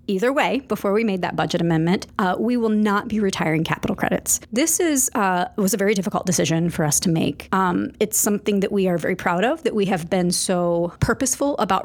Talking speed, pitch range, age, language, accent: 225 wpm, 180-225 Hz, 40-59, English, American